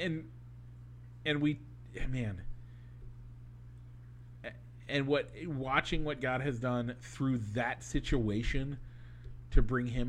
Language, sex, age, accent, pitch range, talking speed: English, male, 40-59, American, 115-125 Hz, 100 wpm